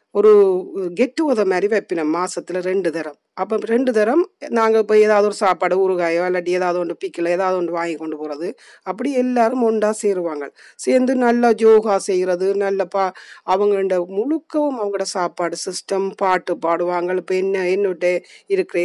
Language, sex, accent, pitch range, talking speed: Tamil, female, native, 175-225 Hz, 145 wpm